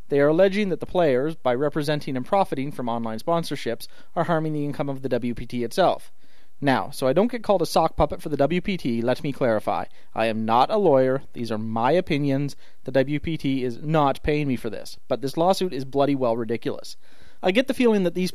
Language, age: English, 30-49